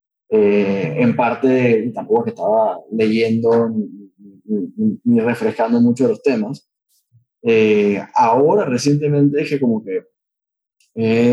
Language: Spanish